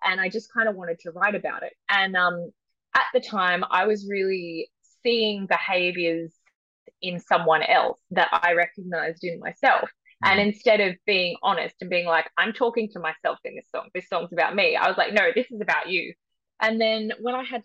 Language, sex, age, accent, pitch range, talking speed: English, female, 20-39, Australian, 170-225 Hz, 205 wpm